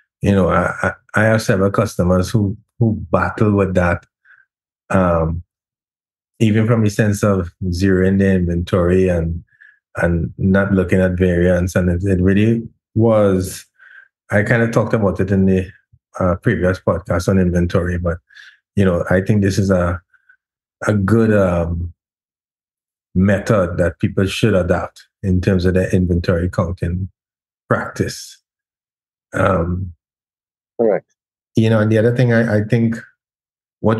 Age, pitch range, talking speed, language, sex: 20-39, 95-110 Hz, 140 wpm, English, male